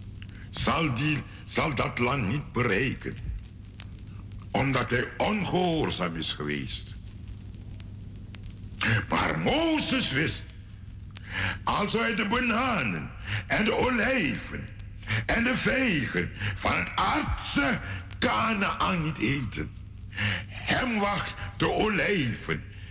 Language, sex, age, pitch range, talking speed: Dutch, male, 60-79, 100-135 Hz, 90 wpm